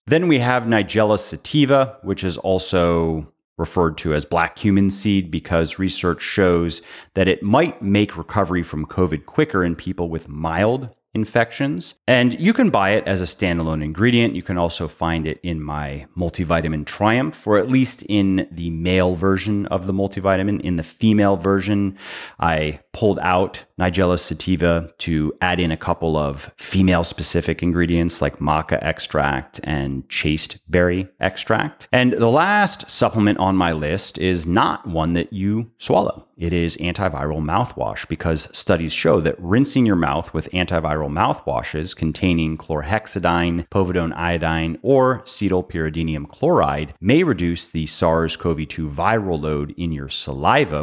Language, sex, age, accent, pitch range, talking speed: English, male, 30-49, American, 80-100 Hz, 150 wpm